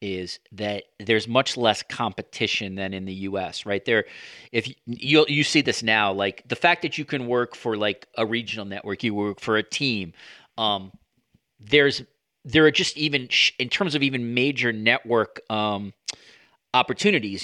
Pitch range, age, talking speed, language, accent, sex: 115-155 Hz, 40-59, 175 wpm, English, American, male